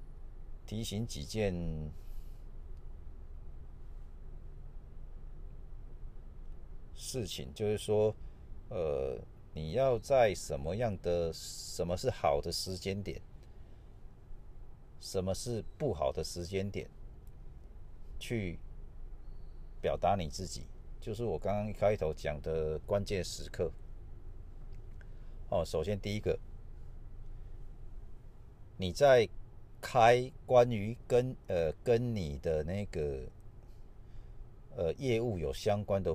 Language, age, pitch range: Chinese, 50-69, 80-110 Hz